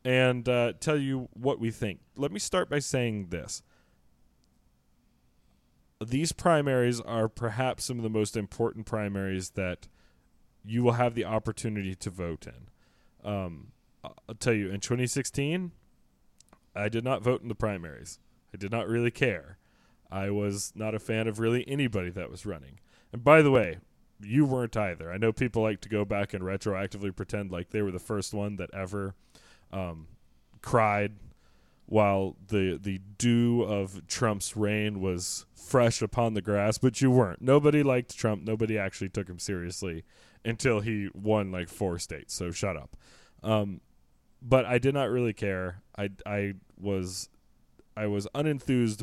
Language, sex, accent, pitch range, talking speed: English, male, American, 95-120 Hz, 165 wpm